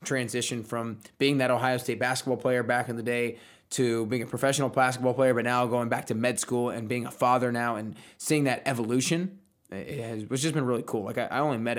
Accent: American